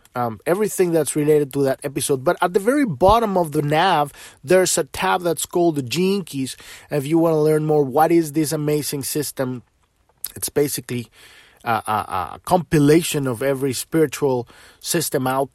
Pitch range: 130-170 Hz